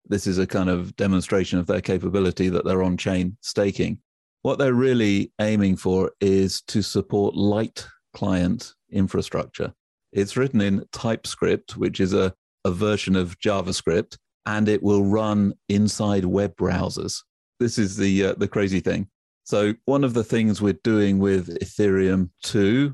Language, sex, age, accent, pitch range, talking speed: English, male, 40-59, British, 95-105 Hz, 155 wpm